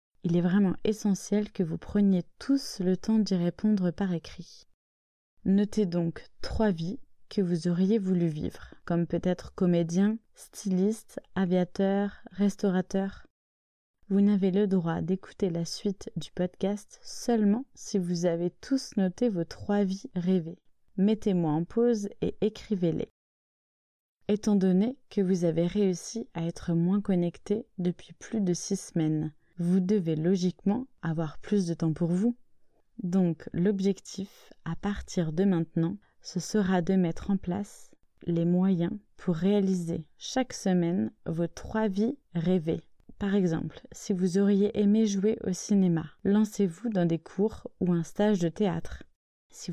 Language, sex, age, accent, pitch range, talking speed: French, female, 20-39, French, 175-205 Hz, 140 wpm